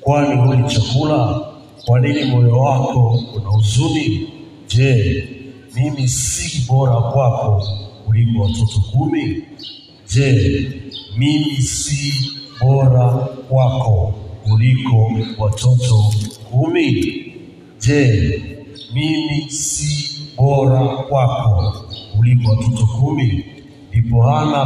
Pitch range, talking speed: 115-135 Hz, 85 wpm